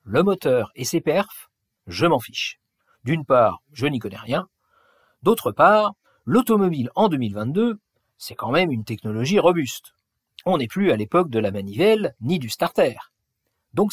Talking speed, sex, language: 160 wpm, male, French